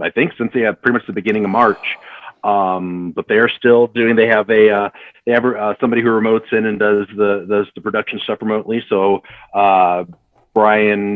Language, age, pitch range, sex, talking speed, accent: English, 40-59, 105-120 Hz, male, 210 wpm, American